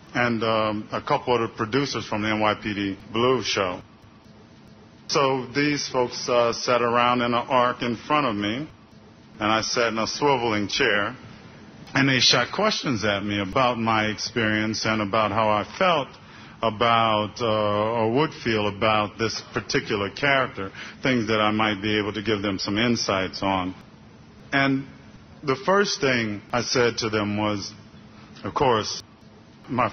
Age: 40-59